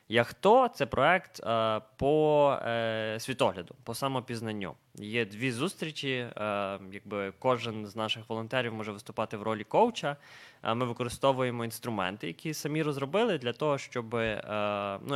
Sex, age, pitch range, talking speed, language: male, 20-39, 110-140 Hz, 125 wpm, Ukrainian